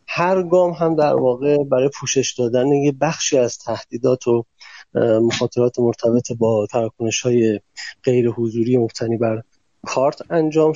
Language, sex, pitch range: Persian, male, 125-150 Hz